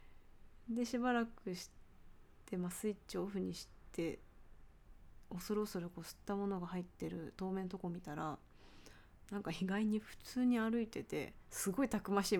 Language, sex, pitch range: Japanese, female, 155-205 Hz